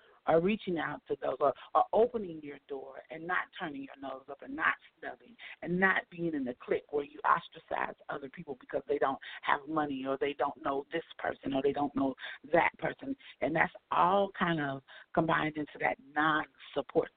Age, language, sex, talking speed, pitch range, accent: 40-59, English, female, 195 wpm, 155-220 Hz, American